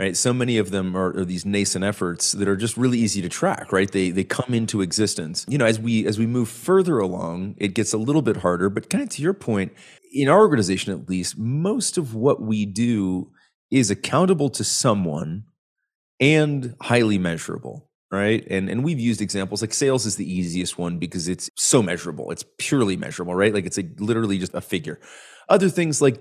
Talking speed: 210 wpm